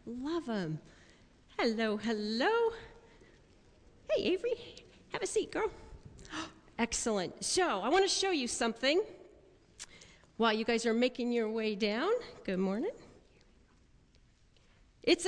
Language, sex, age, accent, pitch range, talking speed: English, female, 40-59, American, 215-320 Hz, 115 wpm